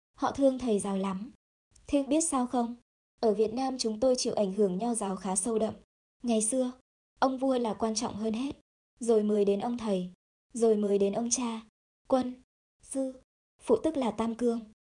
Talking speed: 195 wpm